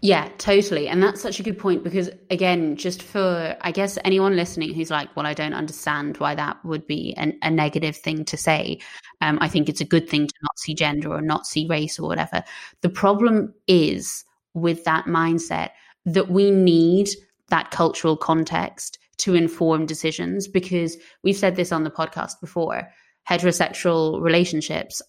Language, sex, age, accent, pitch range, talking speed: English, female, 20-39, British, 160-185 Hz, 175 wpm